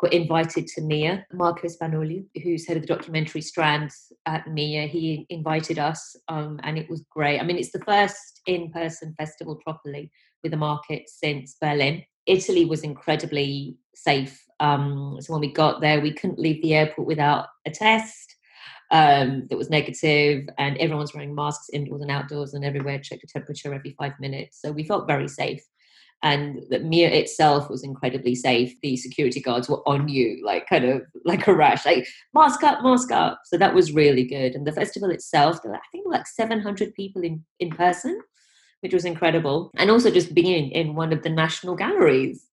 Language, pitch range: English, 145-175 Hz